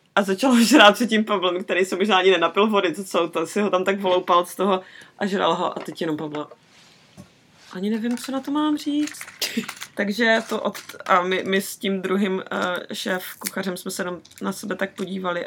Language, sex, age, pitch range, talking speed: Czech, female, 20-39, 180-215 Hz, 210 wpm